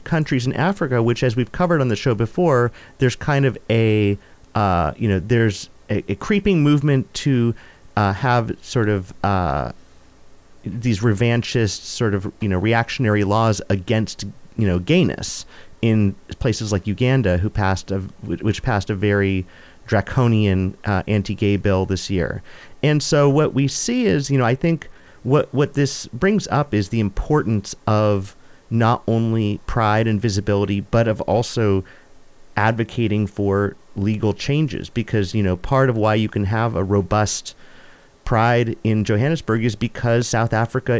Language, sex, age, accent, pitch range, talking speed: English, male, 40-59, American, 105-130 Hz, 155 wpm